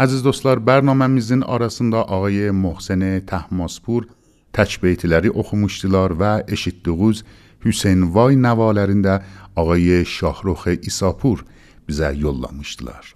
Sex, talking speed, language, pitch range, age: male, 85 wpm, Persian, 85-110 Hz, 60-79